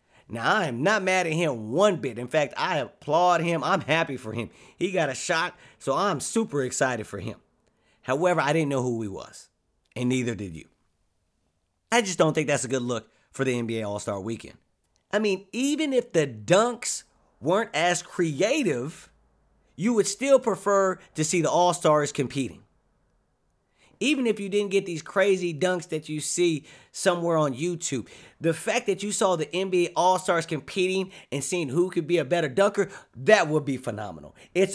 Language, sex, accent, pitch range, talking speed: English, male, American, 135-195 Hz, 185 wpm